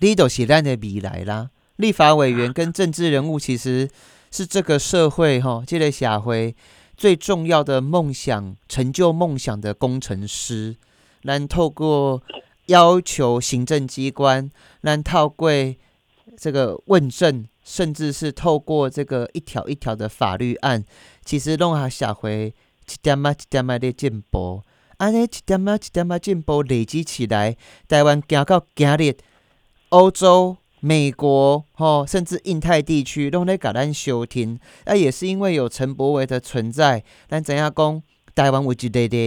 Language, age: Chinese, 30-49